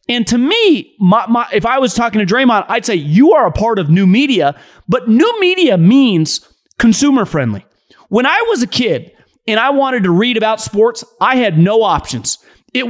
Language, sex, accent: English, male, American